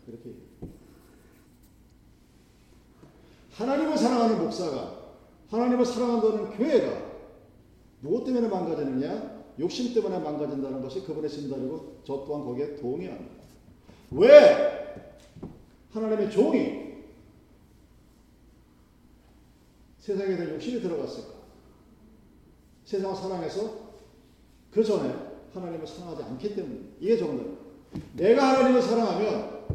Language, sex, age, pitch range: Korean, male, 40-59, 180-240 Hz